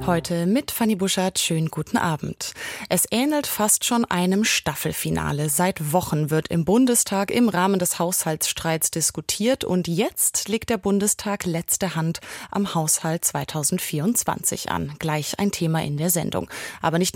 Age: 30-49